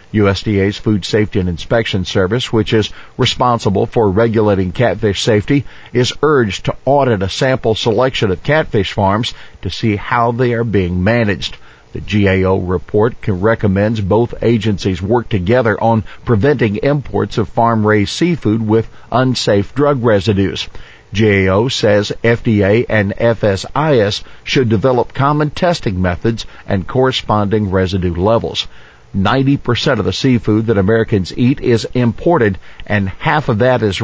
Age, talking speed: 50-69, 135 wpm